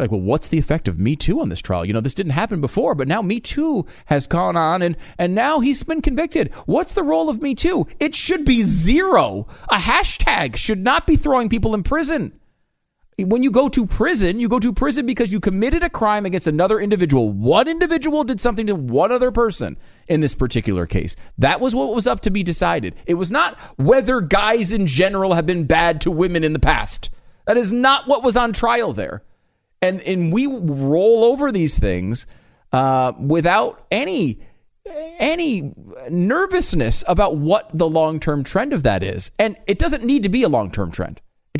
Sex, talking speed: male, 200 wpm